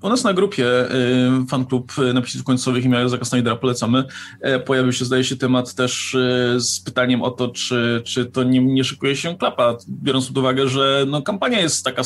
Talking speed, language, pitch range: 190 wpm, Polish, 125-150 Hz